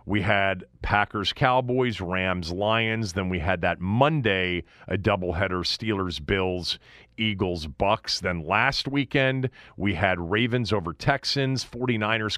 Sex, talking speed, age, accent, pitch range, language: male, 100 wpm, 40-59, American, 90-120 Hz, English